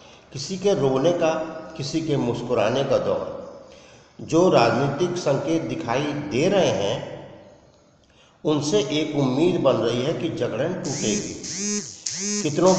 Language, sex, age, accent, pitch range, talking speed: Hindi, male, 50-69, native, 130-160 Hz, 120 wpm